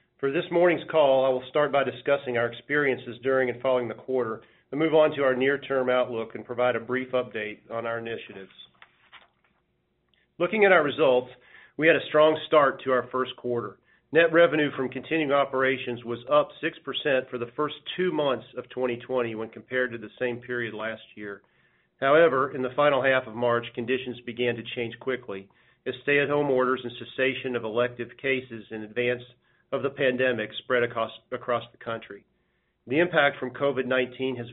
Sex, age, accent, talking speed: male, 40-59, American, 175 wpm